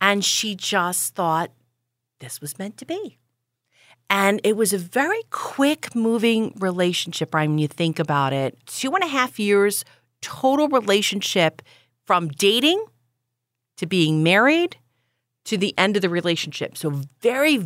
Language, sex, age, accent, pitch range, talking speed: English, female, 40-59, American, 155-210 Hz, 145 wpm